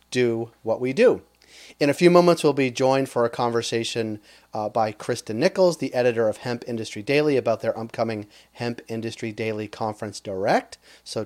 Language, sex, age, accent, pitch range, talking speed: English, male, 30-49, American, 115-135 Hz, 175 wpm